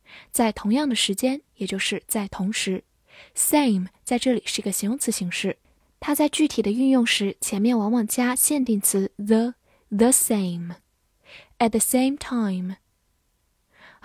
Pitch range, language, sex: 205-250 Hz, Chinese, female